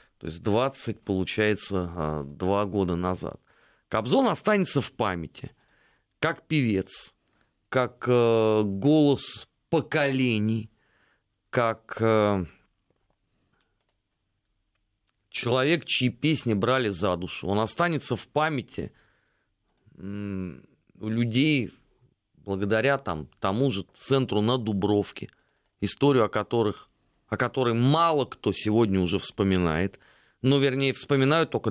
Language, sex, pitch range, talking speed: Russian, male, 100-125 Hz, 95 wpm